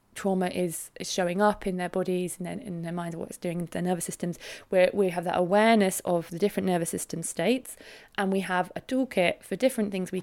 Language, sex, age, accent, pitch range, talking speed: English, female, 20-39, British, 175-210 Hz, 230 wpm